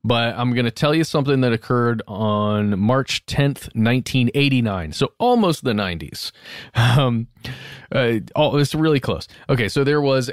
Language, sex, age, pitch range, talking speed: English, male, 20-39, 110-135 Hz, 145 wpm